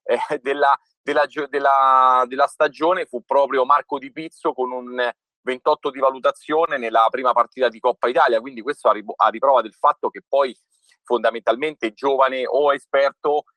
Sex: male